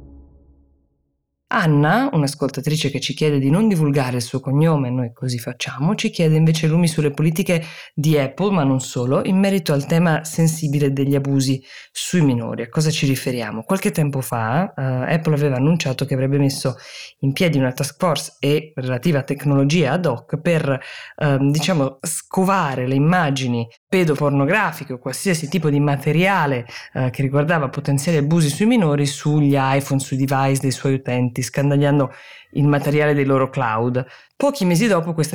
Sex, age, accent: female, 20-39, native